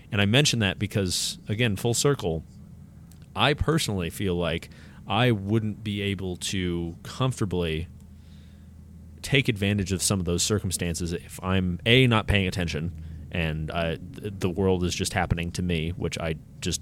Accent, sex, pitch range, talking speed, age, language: American, male, 85-105 Hz, 150 wpm, 30-49, English